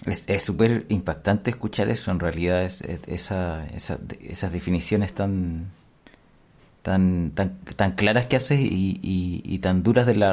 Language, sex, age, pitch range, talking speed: Spanish, male, 30-49, 100-130 Hz, 170 wpm